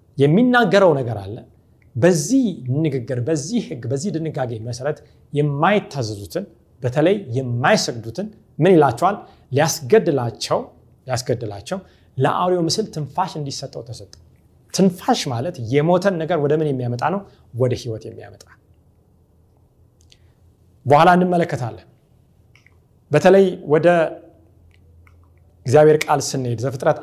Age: 30-49